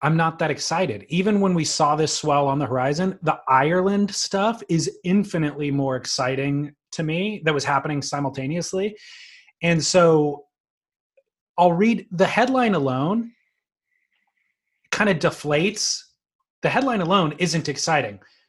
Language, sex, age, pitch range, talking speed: English, male, 30-49, 150-200 Hz, 135 wpm